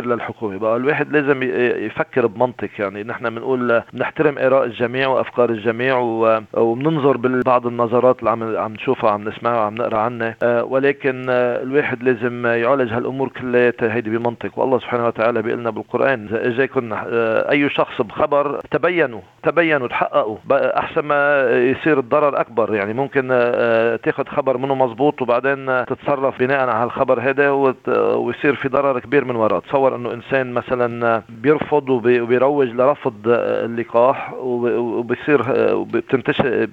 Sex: male